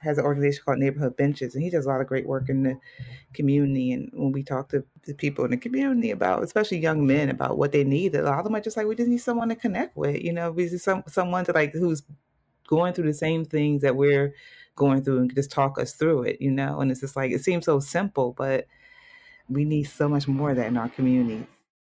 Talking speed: 255 wpm